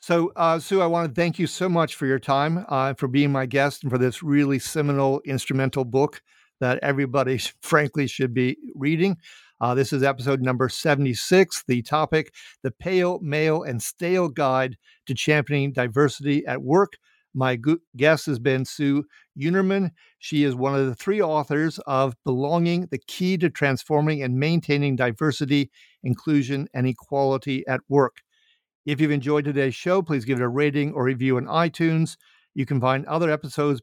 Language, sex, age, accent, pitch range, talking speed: English, male, 50-69, American, 130-160 Hz, 170 wpm